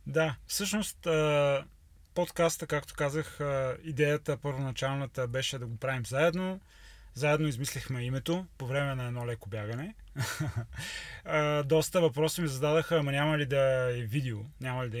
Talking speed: 135 wpm